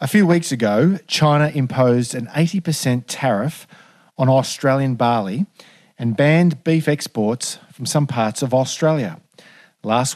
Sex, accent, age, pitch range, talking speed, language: male, Australian, 40-59, 125-170 Hz, 130 wpm, English